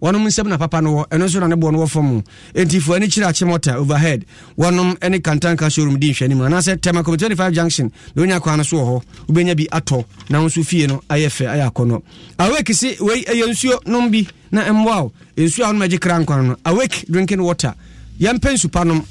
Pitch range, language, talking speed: 140-190 Hz, English, 180 wpm